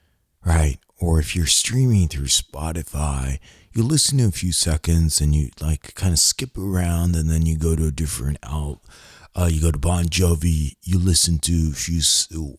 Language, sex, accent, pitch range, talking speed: English, male, American, 80-95 Hz, 185 wpm